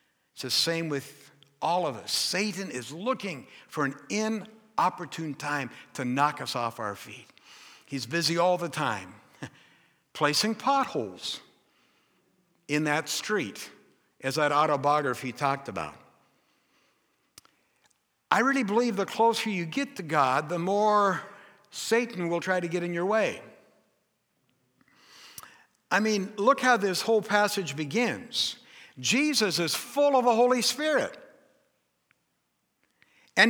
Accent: American